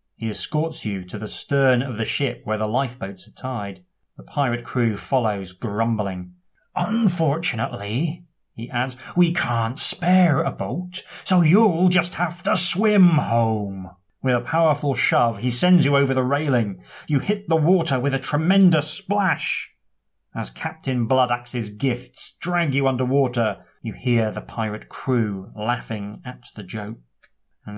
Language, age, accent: English, 30-49, British